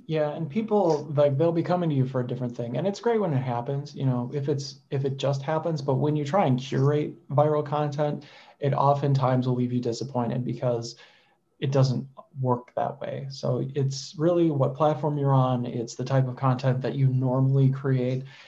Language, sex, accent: English, male, American